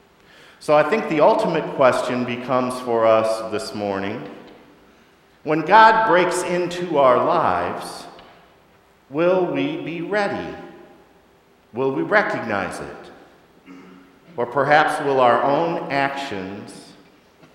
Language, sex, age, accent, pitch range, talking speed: English, male, 50-69, American, 115-170 Hz, 105 wpm